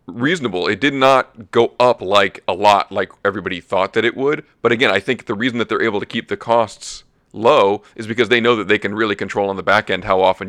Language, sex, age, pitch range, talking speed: English, male, 40-59, 100-115 Hz, 250 wpm